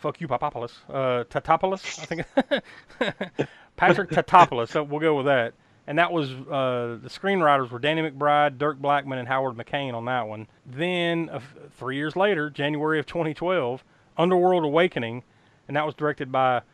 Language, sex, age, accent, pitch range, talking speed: English, male, 30-49, American, 120-150 Hz, 165 wpm